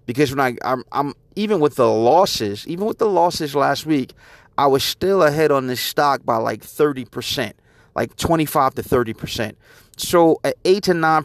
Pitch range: 125-155 Hz